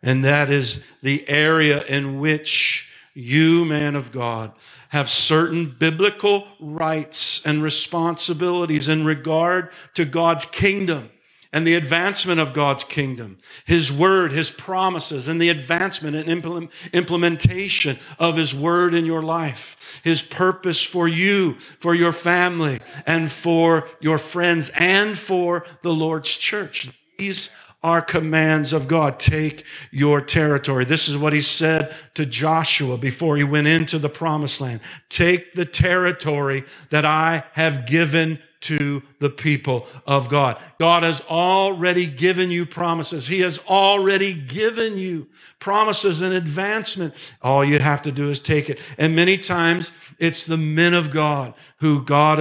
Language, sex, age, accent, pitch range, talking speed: English, male, 50-69, American, 145-170 Hz, 145 wpm